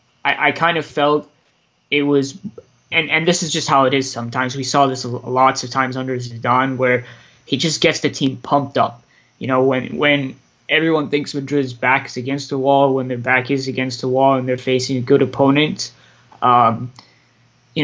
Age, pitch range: 20-39, 125-140 Hz